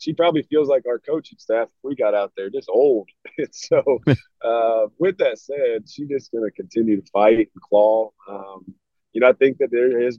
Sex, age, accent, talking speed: male, 30-49, American, 205 wpm